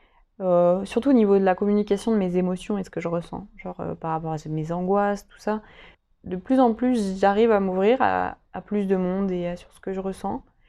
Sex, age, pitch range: female, 20-39, 180-210 Hz